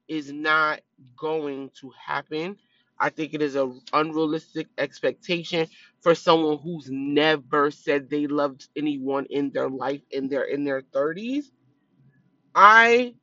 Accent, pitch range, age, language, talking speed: American, 145-195 Hz, 20-39, English, 130 wpm